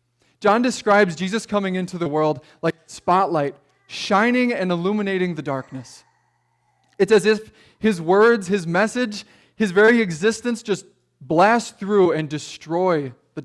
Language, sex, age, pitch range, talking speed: English, male, 20-39, 125-205 Hz, 135 wpm